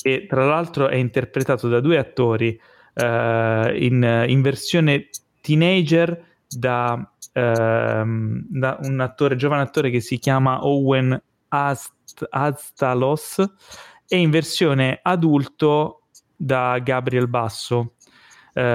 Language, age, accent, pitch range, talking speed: Italian, 30-49, native, 120-150 Hz, 110 wpm